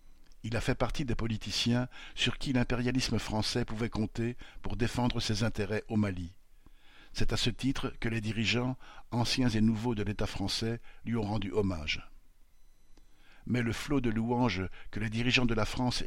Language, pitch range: French, 105-125 Hz